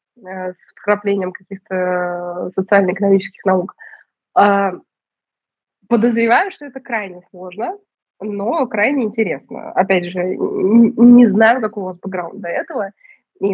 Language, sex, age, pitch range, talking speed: Russian, female, 20-39, 190-240 Hz, 105 wpm